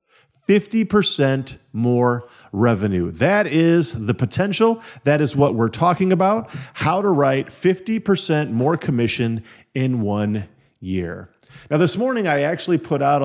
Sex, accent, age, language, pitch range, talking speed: male, American, 50-69, English, 120-160 Hz, 125 wpm